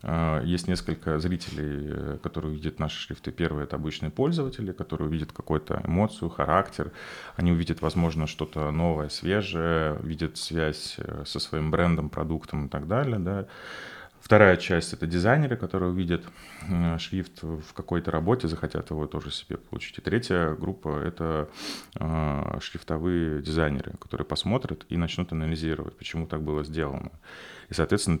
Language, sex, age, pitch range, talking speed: Russian, male, 30-49, 80-90 Hz, 135 wpm